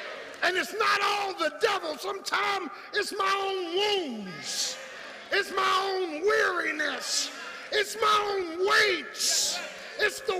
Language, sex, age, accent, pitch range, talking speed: English, male, 50-69, American, 290-410 Hz, 120 wpm